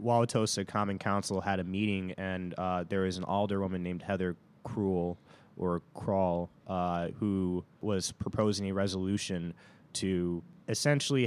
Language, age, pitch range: English, 20-39, 90-100 Hz